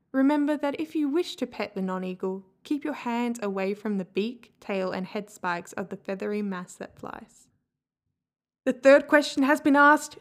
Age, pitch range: 20-39, 195-255 Hz